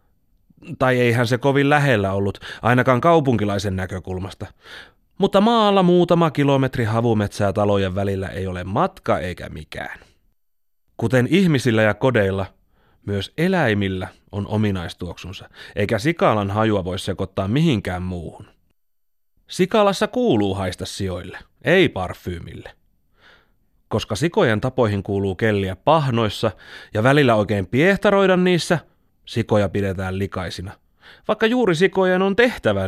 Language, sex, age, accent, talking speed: Finnish, male, 30-49, native, 110 wpm